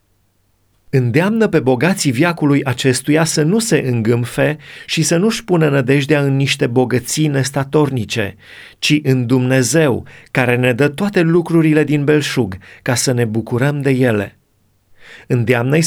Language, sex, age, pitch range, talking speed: Romanian, male, 30-49, 120-150 Hz, 130 wpm